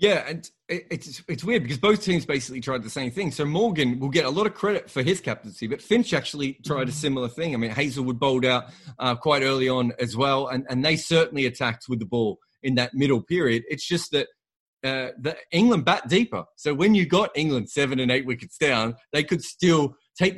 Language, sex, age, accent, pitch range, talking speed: English, male, 30-49, Australian, 125-165 Hz, 225 wpm